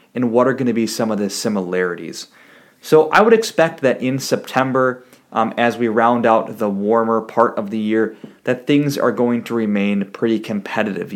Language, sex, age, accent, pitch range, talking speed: English, male, 30-49, American, 110-130 Hz, 195 wpm